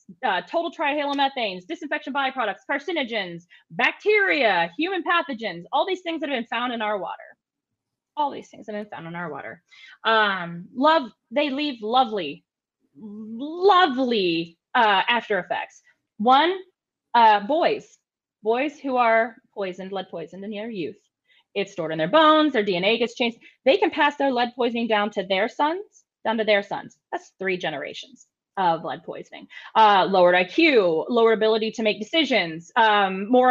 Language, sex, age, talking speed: English, female, 20-39, 160 wpm